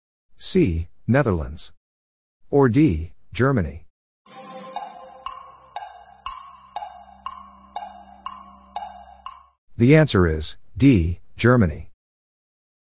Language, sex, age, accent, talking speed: English, male, 50-69, American, 45 wpm